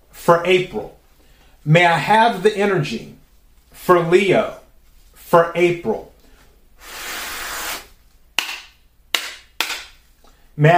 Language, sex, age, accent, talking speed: English, male, 30-49, American, 65 wpm